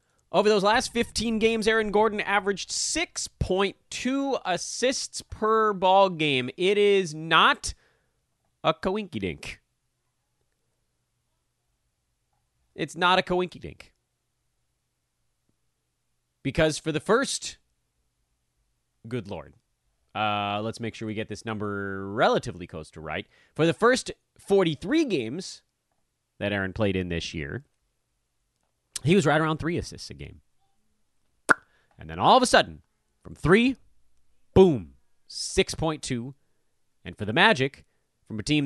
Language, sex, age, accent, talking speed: English, male, 30-49, American, 120 wpm